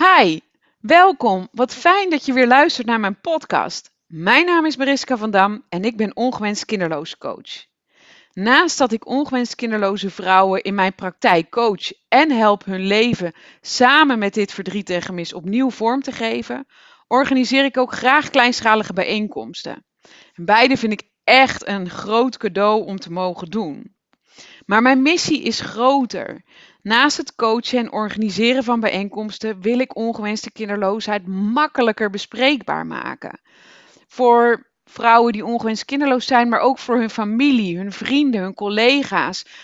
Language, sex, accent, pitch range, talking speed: Dutch, female, Dutch, 210-255 Hz, 150 wpm